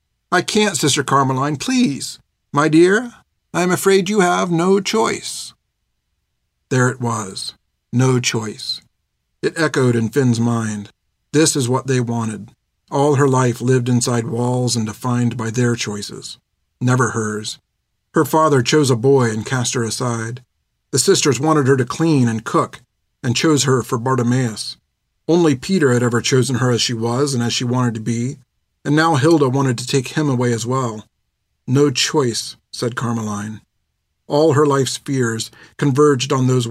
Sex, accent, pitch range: male, American, 120-145 Hz